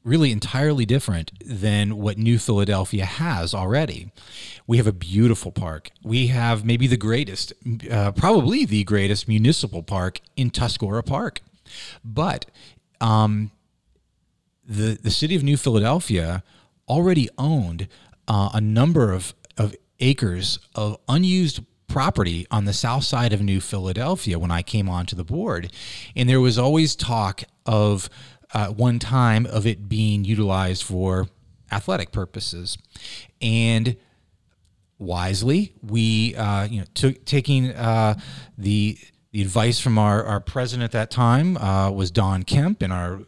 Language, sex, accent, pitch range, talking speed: English, male, American, 100-125 Hz, 140 wpm